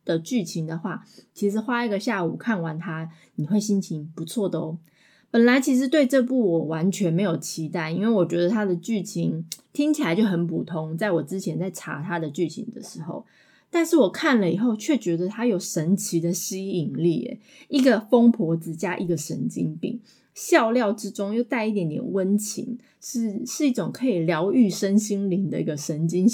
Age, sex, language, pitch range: 20-39, female, Chinese, 170-230 Hz